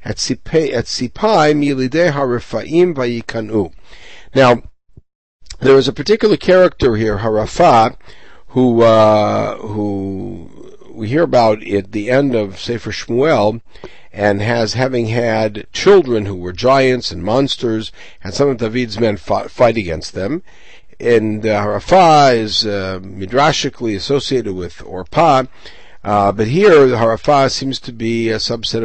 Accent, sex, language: American, male, English